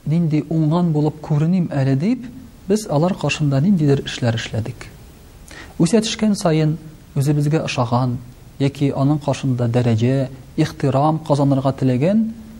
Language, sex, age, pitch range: Russian, male, 40-59, 120-150 Hz